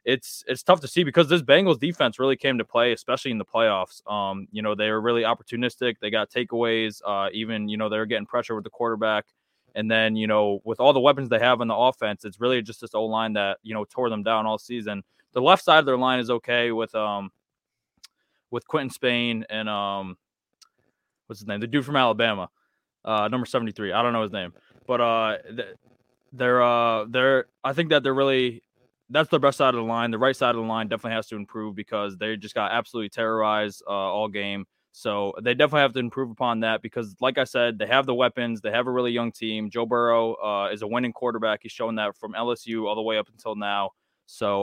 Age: 20-39